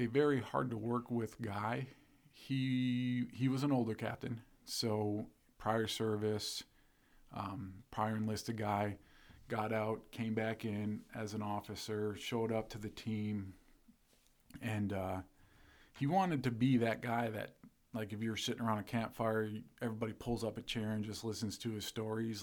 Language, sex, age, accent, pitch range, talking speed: English, male, 40-59, American, 105-120 Hz, 155 wpm